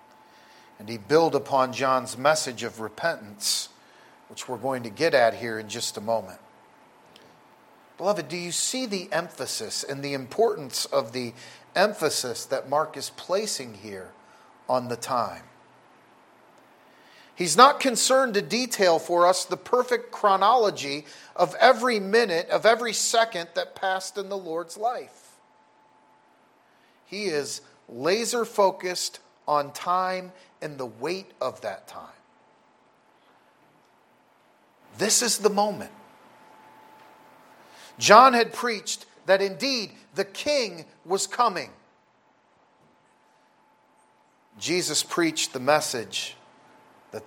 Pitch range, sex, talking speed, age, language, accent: 135-210 Hz, male, 115 wpm, 40-59, English, American